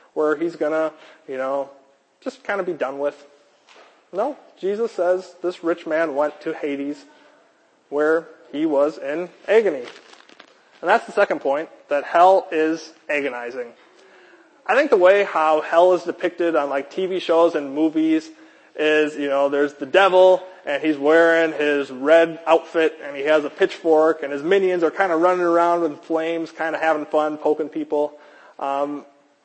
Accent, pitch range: American, 145-180 Hz